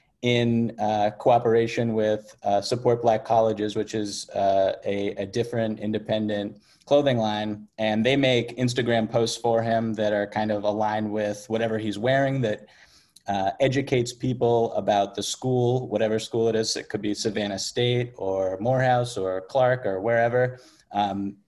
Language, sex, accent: English, male, American